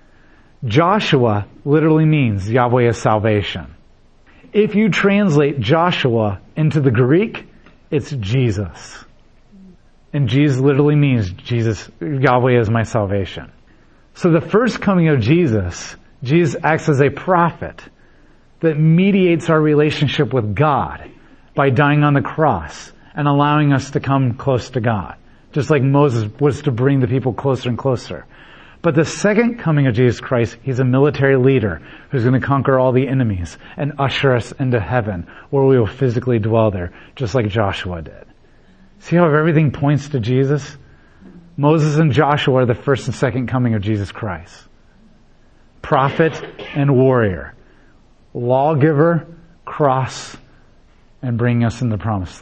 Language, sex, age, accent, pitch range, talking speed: English, male, 40-59, American, 115-155 Hz, 145 wpm